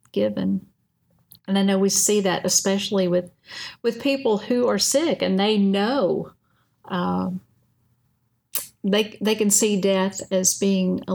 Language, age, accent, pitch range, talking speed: English, 50-69, American, 175-225 Hz, 140 wpm